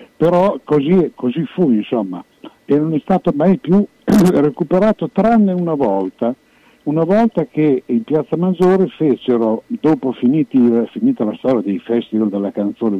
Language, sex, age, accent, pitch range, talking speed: Italian, male, 60-79, native, 120-180 Hz, 145 wpm